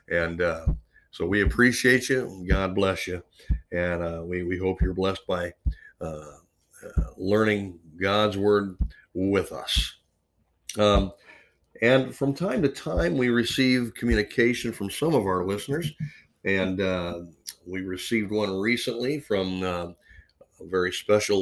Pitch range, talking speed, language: 95-125 Hz, 140 wpm, English